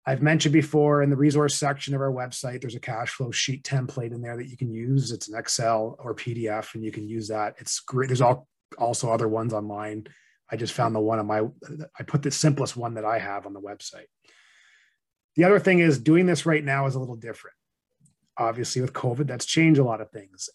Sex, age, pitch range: male, 30-49, 110-145 Hz